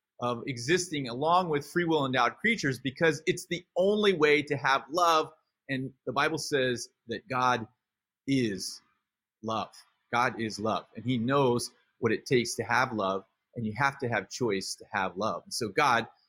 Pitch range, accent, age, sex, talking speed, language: 115-145 Hz, American, 30-49, male, 175 wpm, English